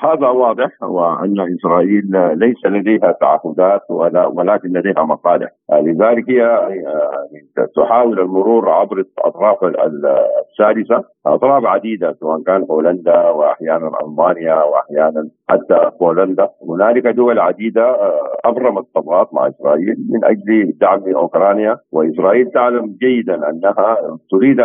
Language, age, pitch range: Arabic, 50-69, 95-120 Hz